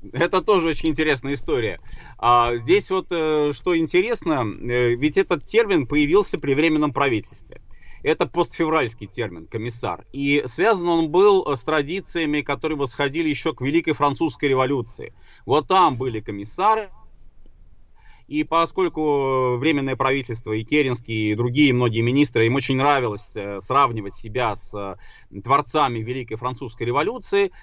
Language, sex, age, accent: Russian, male, 30-49, native